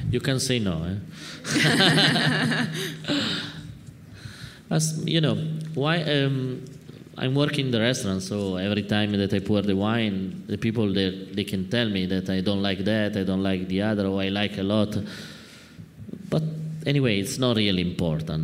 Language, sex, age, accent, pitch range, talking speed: English, male, 20-39, Italian, 90-110 Hz, 165 wpm